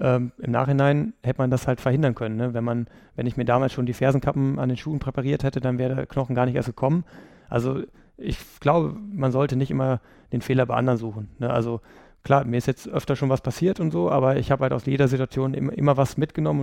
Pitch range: 125-140 Hz